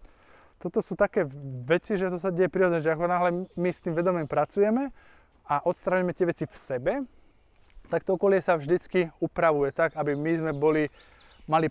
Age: 20-39